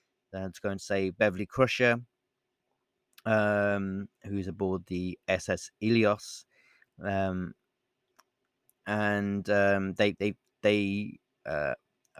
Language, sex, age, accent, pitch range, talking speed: English, male, 30-49, British, 95-110 Hz, 100 wpm